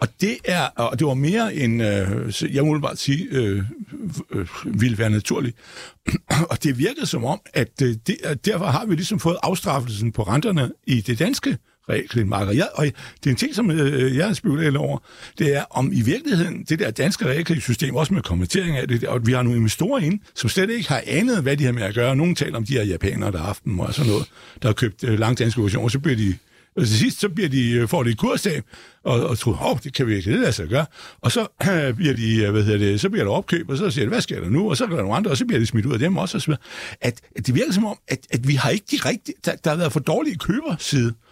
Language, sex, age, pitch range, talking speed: Danish, male, 60-79, 120-170 Hz, 265 wpm